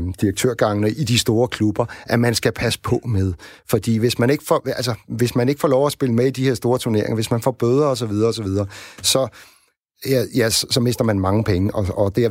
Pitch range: 100-130 Hz